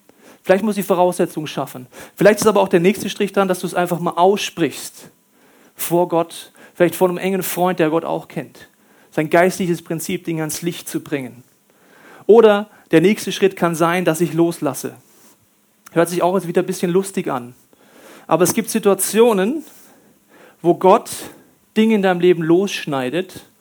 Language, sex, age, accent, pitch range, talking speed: German, male, 40-59, German, 170-240 Hz, 170 wpm